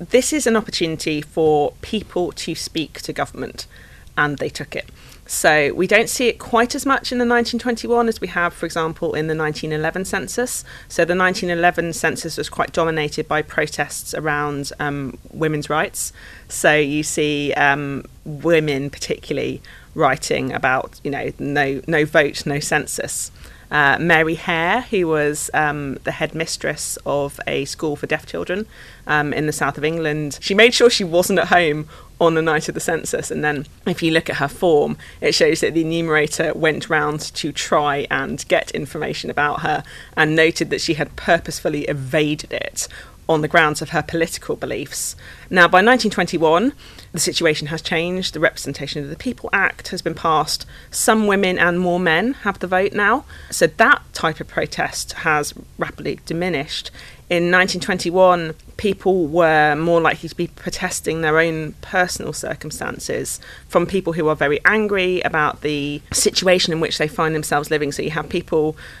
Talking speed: 170 wpm